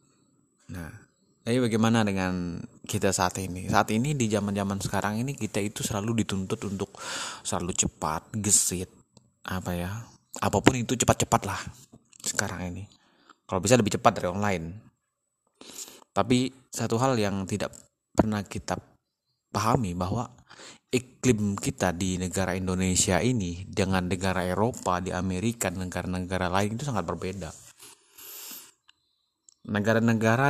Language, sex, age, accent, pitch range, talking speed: Indonesian, male, 30-49, native, 95-120 Hz, 120 wpm